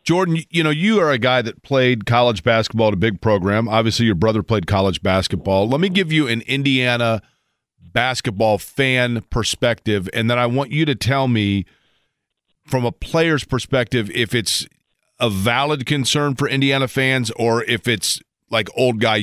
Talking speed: 175 wpm